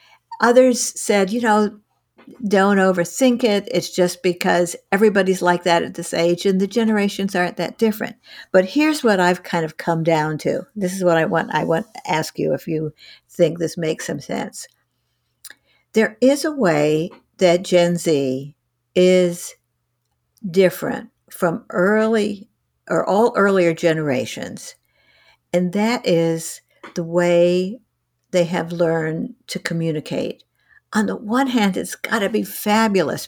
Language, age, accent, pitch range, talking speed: English, 60-79, American, 175-220 Hz, 150 wpm